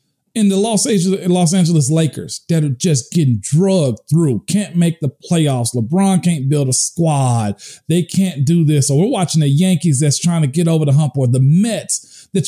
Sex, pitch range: male, 150-195 Hz